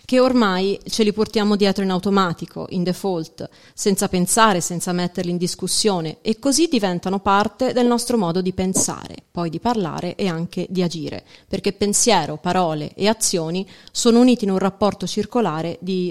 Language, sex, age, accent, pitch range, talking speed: Italian, female, 30-49, native, 185-235 Hz, 165 wpm